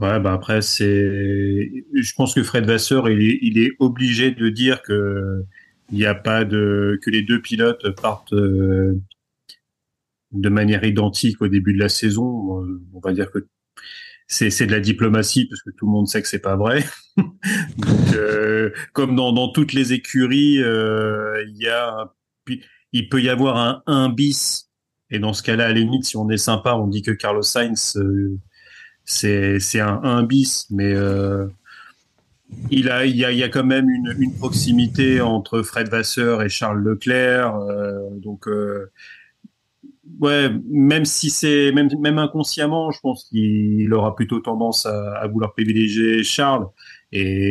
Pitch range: 105-130 Hz